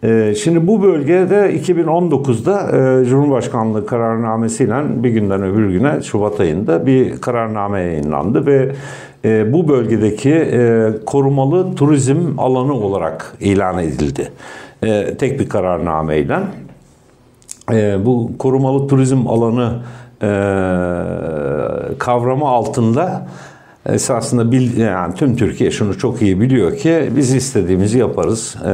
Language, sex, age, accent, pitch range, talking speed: Turkish, male, 60-79, native, 100-135 Hz, 95 wpm